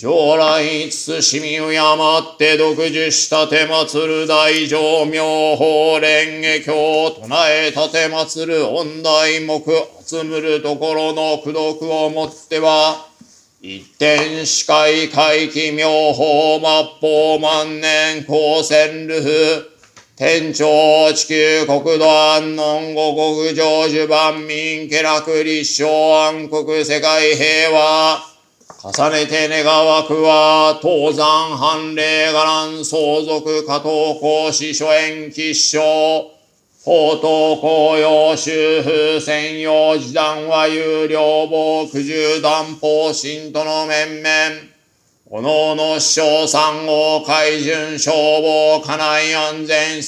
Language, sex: Japanese, male